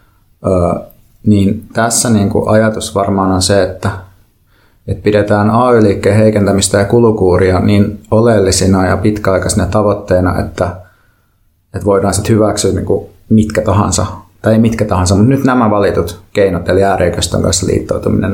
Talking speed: 135 wpm